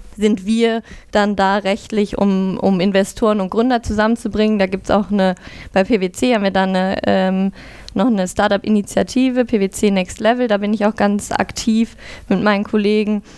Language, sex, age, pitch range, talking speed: German, female, 20-39, 190-215 Hz, 160 wpm